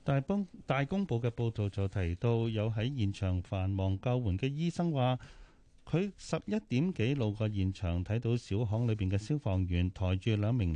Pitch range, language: 100-140 Hz, Chinese